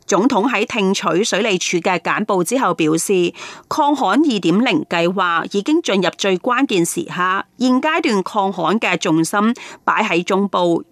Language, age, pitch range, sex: Chinese, 30-49, 175-260 Hz, female